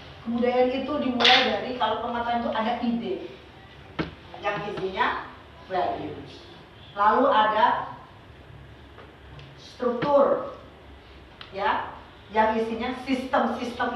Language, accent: Indonesian, native